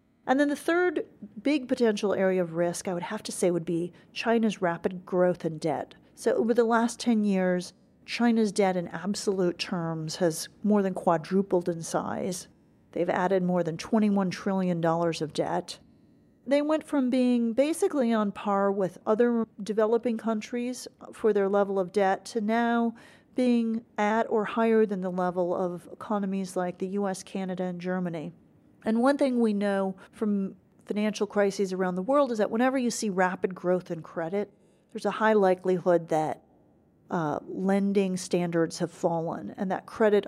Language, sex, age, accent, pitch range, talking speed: English, female, 40-59, American, 180-225 Hz, 165 wpm